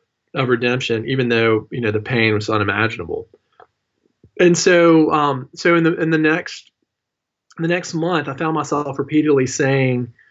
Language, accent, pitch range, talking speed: English, American, 110-130 Hz, 165 wpm